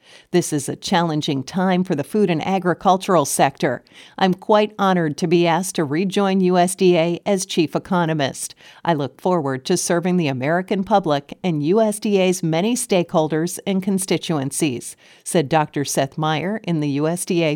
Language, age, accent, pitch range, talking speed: English, 50-69, American, 160-200 Hz, 150 wpm